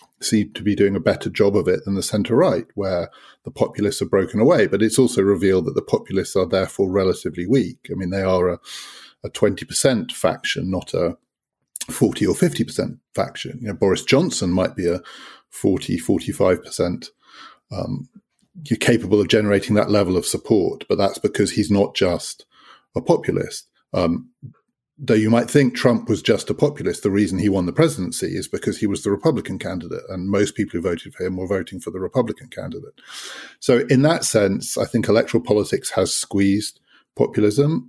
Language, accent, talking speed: English, British, 185 wpm